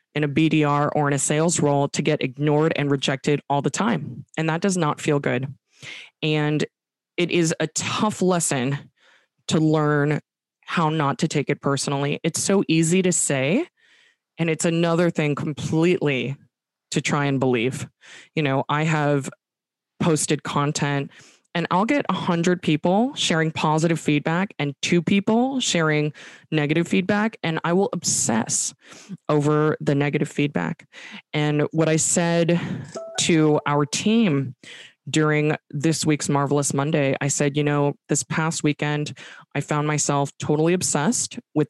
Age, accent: 20-39, American